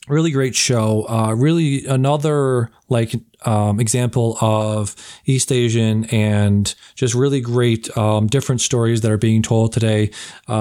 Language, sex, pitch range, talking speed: English, male, 110-125 Hz, 140 wpm